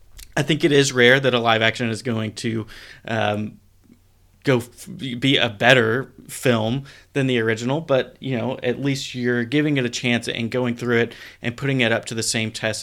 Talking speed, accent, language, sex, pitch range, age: 205 wpm, American, English, male, 115-130 Hz, 20-39